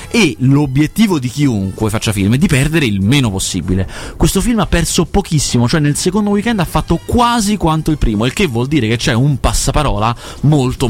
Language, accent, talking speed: Italian, native, 200 wpm